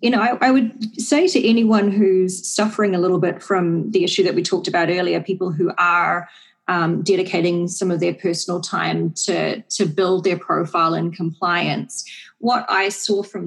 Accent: Australian